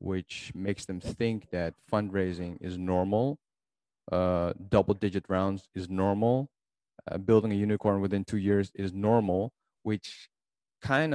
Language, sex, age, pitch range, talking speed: English, male, 30-49, 90-105 Hz, 135 wpm